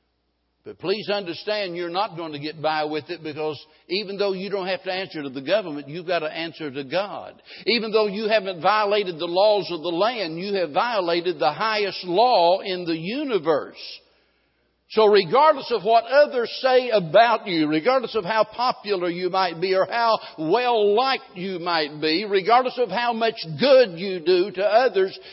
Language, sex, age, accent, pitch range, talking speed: English, male, 60-79, American, 150-215 Hz, 180 wpm